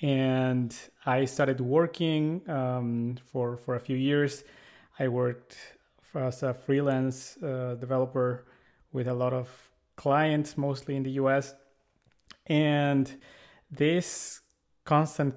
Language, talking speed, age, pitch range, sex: English, 115 wpm, 30-49, 125-145 Hz, male